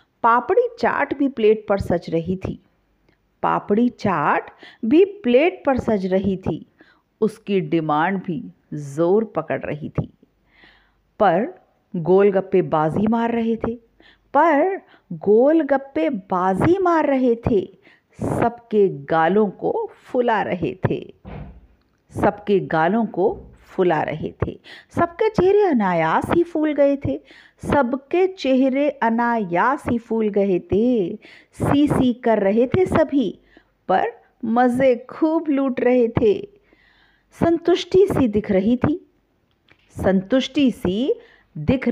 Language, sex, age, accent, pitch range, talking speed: Hindi, female, 50-69, native, 195-295 Hz, 115 wpm